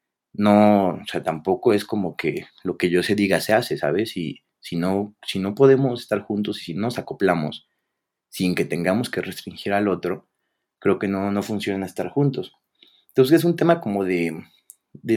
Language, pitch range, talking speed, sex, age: Spanish, 95-120 Hz, 190 wpm, male, 30-49